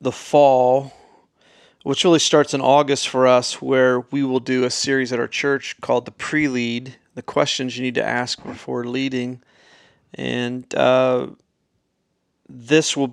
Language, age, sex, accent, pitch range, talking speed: English, 40-59, male, American, 120-130 Hz, 150 wpm